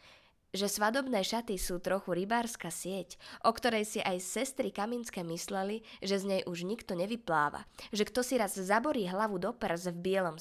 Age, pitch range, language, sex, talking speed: 20-39, 175-220 Hz, Slovak, female, 175 wpm